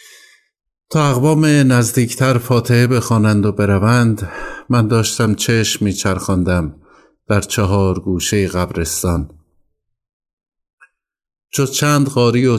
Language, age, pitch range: Persian, 50-69, 95-120 Hz